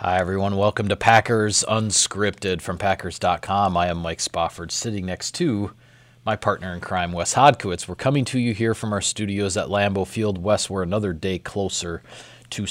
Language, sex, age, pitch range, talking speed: English, male, 30-49, 95-115 Hz, 180 wpm